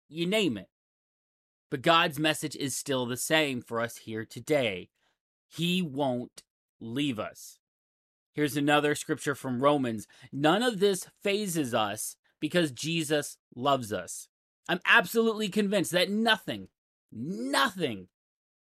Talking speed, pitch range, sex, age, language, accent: 120 wpm, 125-175 Hz, male, 30-49, English, American